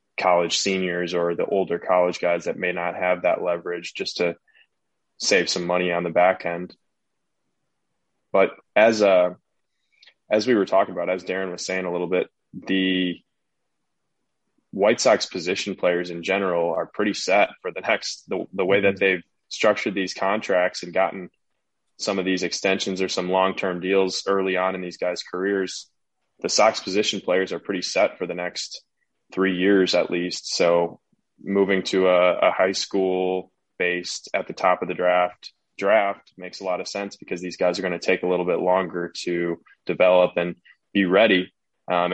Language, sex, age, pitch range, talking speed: English, male, 20-39, 90-95 Hz, 180 wpm